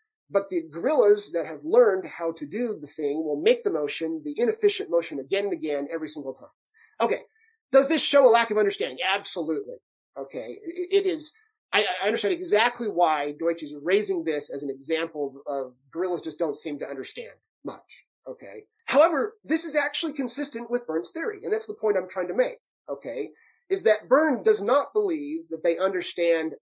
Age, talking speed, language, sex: 30-49, 190 wpm, English, male